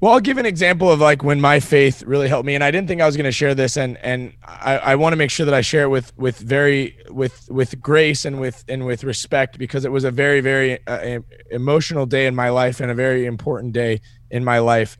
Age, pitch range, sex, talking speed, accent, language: 20-39, 120-145 Hz, male, 265 wpm, American, English